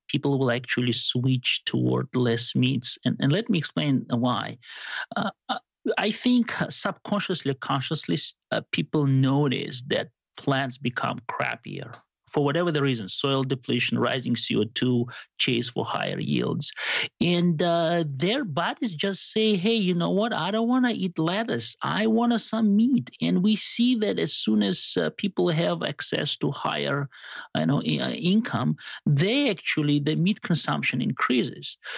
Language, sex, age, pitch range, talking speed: English, male, 50-69, 140-205 Hz, 150 wpm